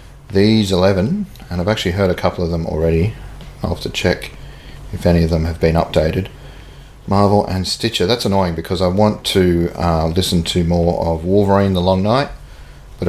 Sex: male